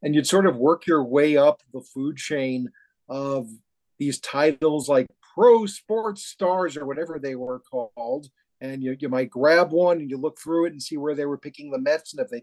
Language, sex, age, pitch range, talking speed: English, male, 40-59, 140-205 Hz, 215 wpm